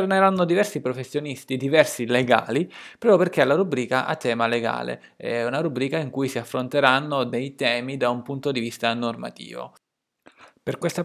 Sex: male